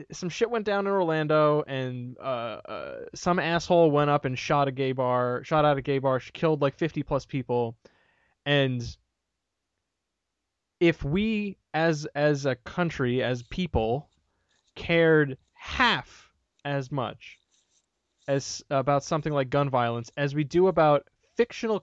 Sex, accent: male, American